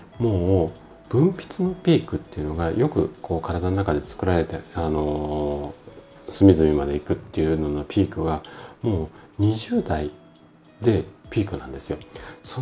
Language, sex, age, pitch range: Japanese, male, 40-59, 80-125 Hz